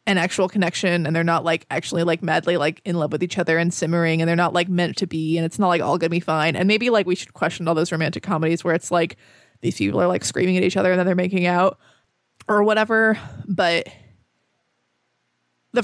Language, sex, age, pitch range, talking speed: English, female, 20-39, 165-195 Hz, 245 wpm